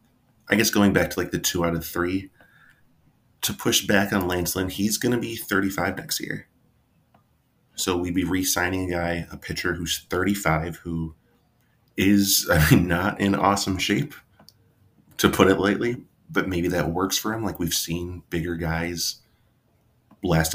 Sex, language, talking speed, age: male, English, 165 wpm, 30-49